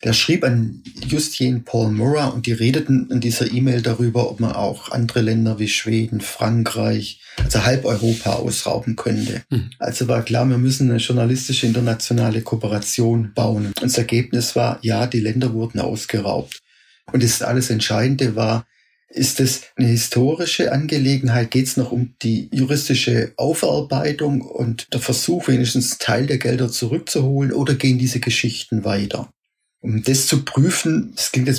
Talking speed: 155 wpm